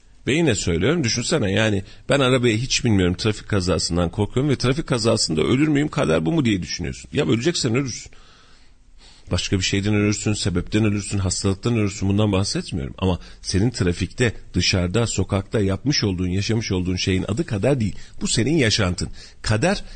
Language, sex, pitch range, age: Turkish, male, 90-120 Hz, 40-59